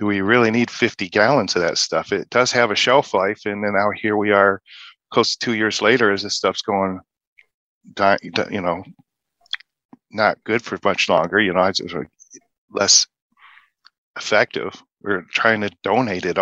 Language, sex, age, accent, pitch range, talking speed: English, male, 40-59, American, 100-110 Hz, 170 wpm